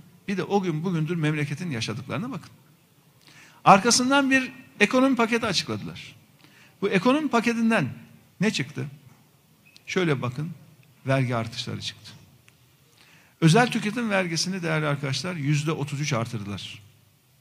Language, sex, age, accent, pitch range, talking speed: Turkish, male, 50-69, native, 135-205 Hz, 105 wpm